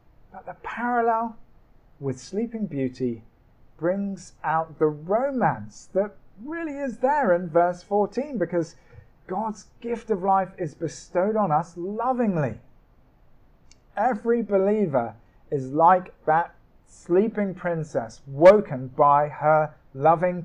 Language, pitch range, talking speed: English, 130-195 Hz, 110 wpm